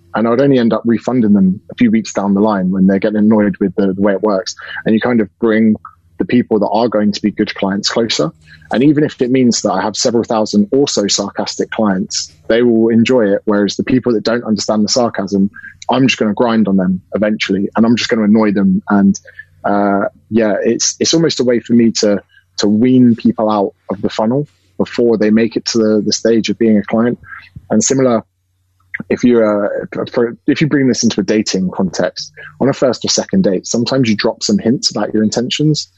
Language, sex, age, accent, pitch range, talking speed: English, male, 20-39, British, 100-120 Hz, 225 wpm